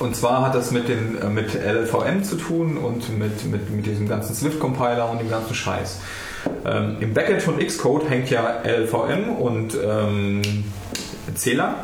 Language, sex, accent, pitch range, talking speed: German, male, German, 105-120 Hz, 160 wpm